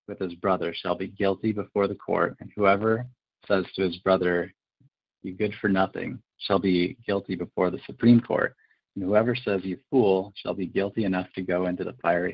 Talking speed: 195 wpm